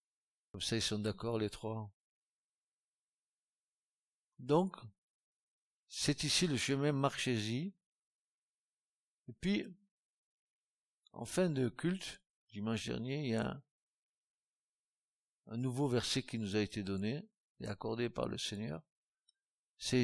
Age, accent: 60-79, French